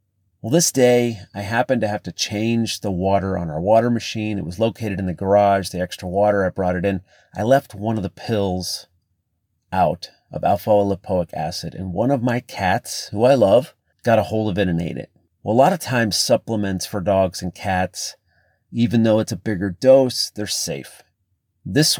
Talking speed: 200 wpm